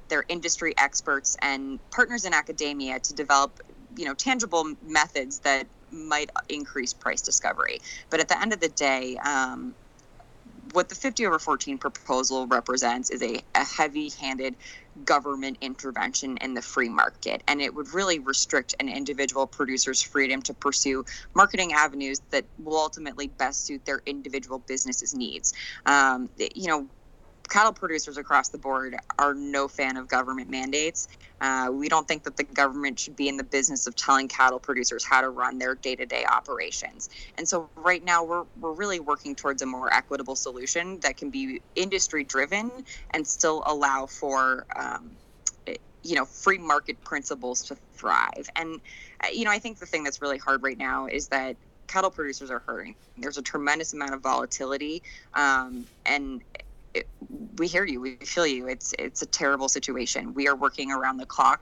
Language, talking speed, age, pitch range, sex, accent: English, 170 wpm, 20-39, 130-160 Hz, female, American